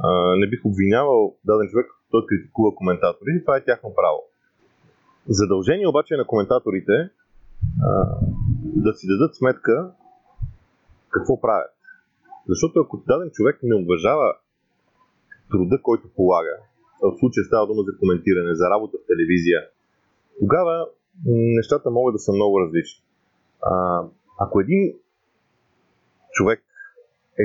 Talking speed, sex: 115 wpm, male